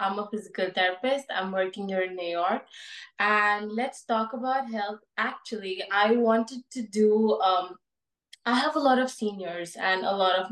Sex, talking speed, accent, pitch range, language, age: female, 175 wpm, Indian, 185-235 Hz, English, 20-39